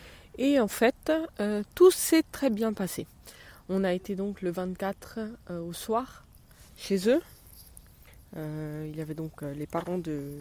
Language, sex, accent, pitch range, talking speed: French, female, French, 165-220 Hz, 160 wpm